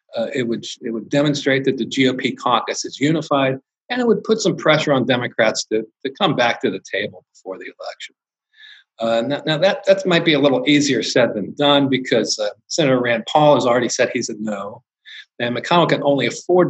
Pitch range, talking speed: 120-170 Hz, 210 wpm